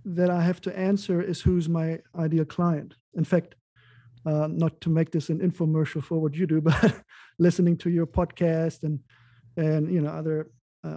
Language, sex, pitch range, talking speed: English, male, 155-180 Hz, 185 wpm